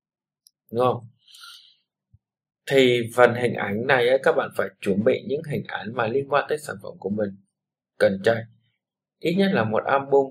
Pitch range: 110-135 Hz